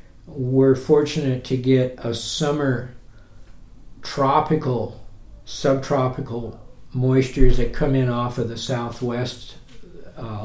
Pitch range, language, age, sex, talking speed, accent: 115-135 Hz, English, 60-79, male, 100 wpm, American